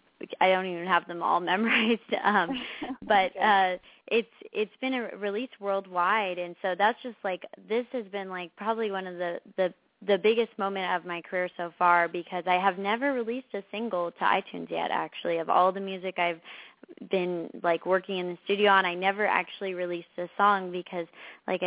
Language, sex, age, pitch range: English, female, 20-39, 175-205 Hz